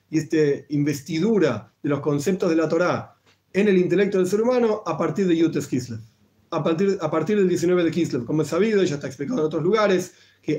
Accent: Argentinian